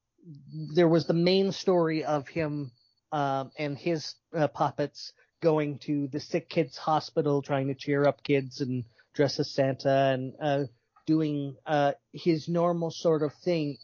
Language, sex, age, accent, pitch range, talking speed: English, male, 30-49, American, 140-175 Hz, 155 wpm